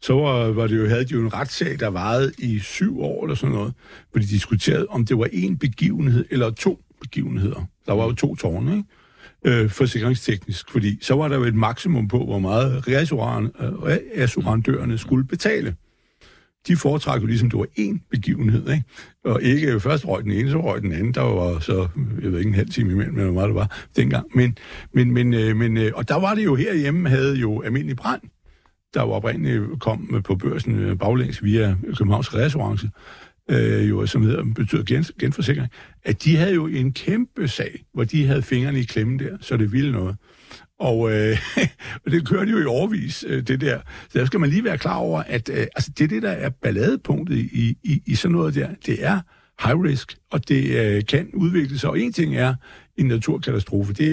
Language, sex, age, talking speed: Danish, male, 60-79, 205 wpm